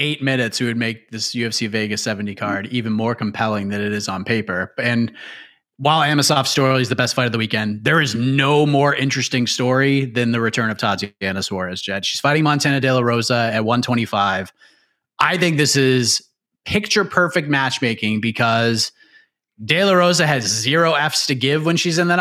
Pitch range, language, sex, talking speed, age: 120-180 Hz, English, male, 190 wpm, 30-49